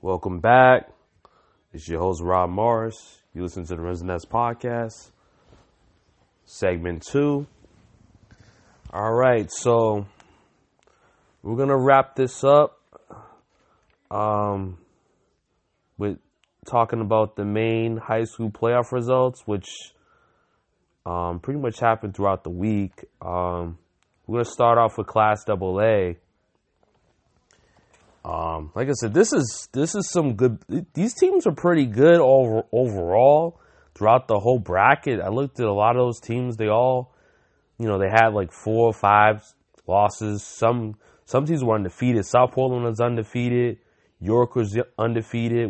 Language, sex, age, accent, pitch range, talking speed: English, male, 20-39, American, 95-125 Hz, 130 wpm